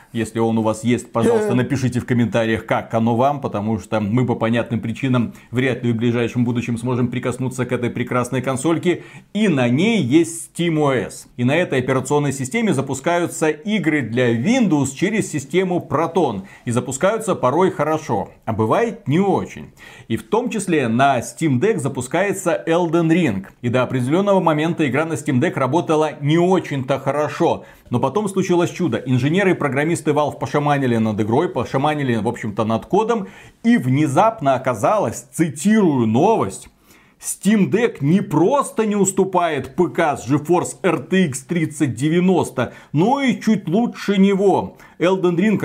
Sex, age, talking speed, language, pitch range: male, 30-49, 150 wpm, Russian, 125-175 Hz